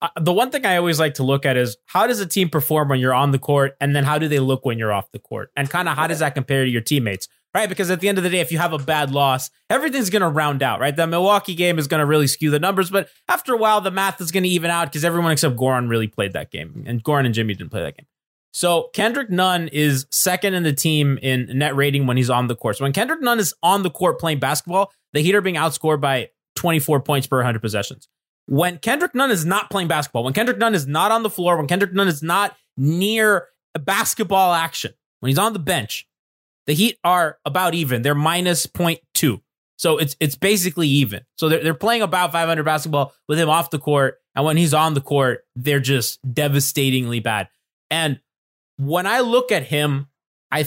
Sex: male